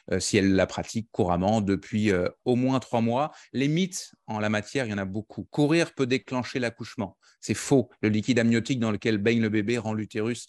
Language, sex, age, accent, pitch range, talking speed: French, male, 30-49, French, 105-130 Hz, 215 wpm